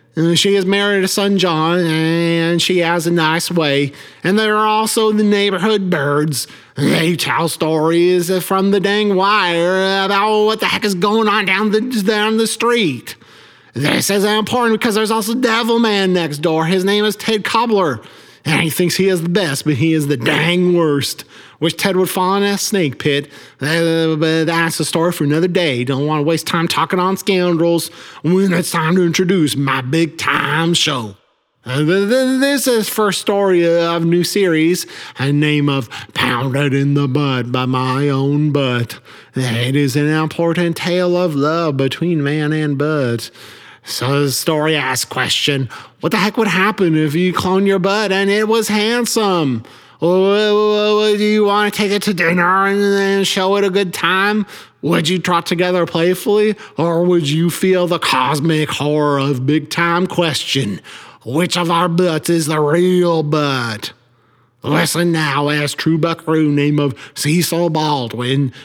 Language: English